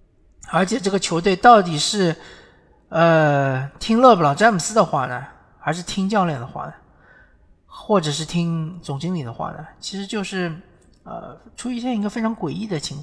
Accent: native